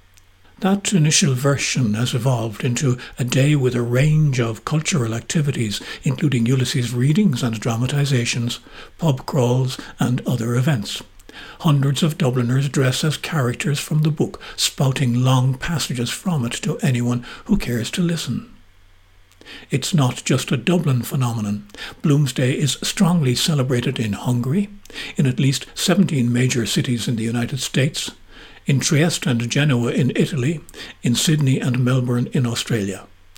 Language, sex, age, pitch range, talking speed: English, male, 60-79, 120-150 Hz, 140 wpm